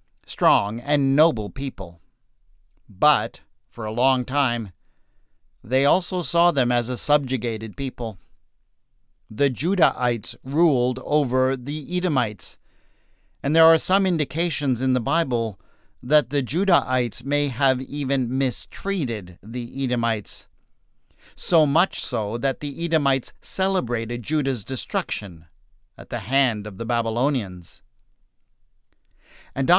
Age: 50-69